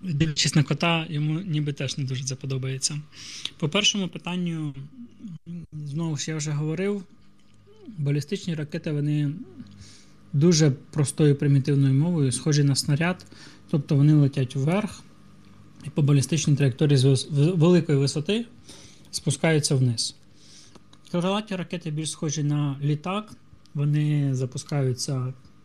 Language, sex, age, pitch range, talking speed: Ukrainian, male, 20-39, 135-165 Hz, 110 wpm